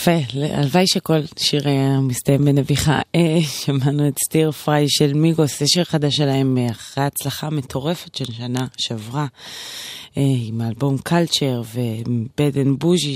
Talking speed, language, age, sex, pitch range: 140 wpm, Hebrew, 20-39, female, 125-155 Hz